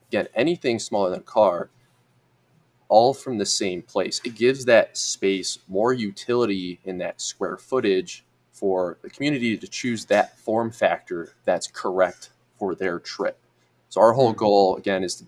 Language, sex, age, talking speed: English, male, 20-39, 160 wpm